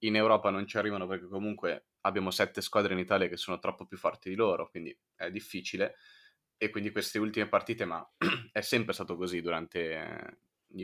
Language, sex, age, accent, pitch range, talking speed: Italian, male, 20-39, native, 95-115 Hz, 190 wpm